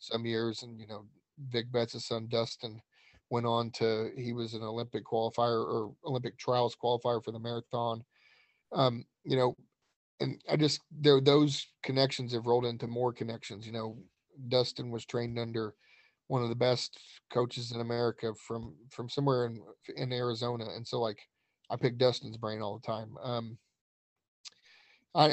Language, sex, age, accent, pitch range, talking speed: English, male, 30-49, American, 115-130 Hz, 165 wpm